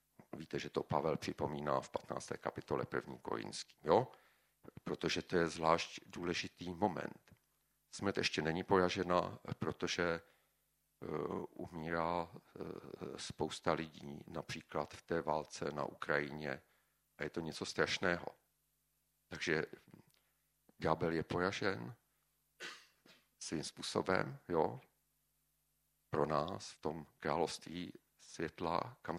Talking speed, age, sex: 105 wpm, 50-69, male